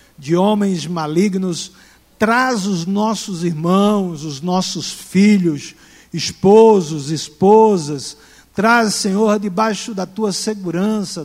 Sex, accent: male, Brazilian